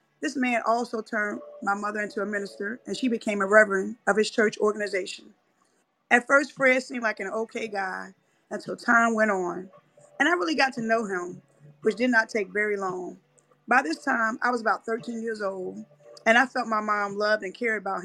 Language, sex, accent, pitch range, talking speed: English, female, American, 200-255 Hz, 205 wpm